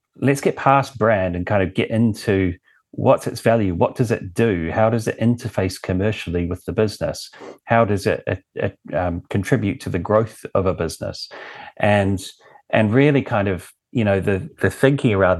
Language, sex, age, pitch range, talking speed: English, male, 30-49, 95-120 Hz, 185 wpm